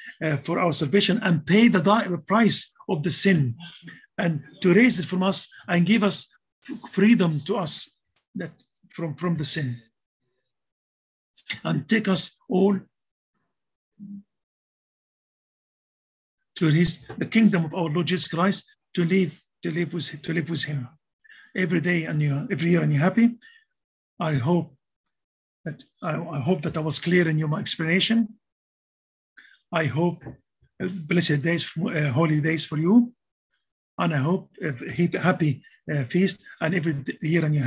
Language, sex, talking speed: English, male, 150 wpm